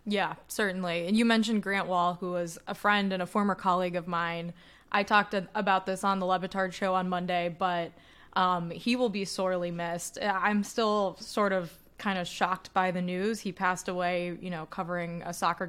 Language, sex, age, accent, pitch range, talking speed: English, female, 20-39, American, 175-195 Hz, 200 wpm